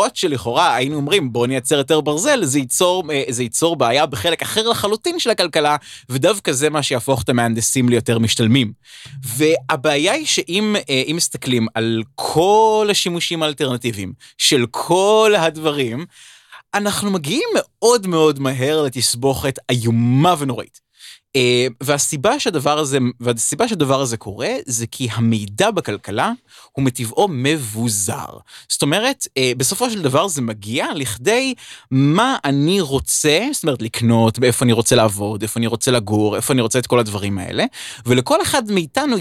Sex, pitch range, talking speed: male, 120-180 Hz, 140 wpm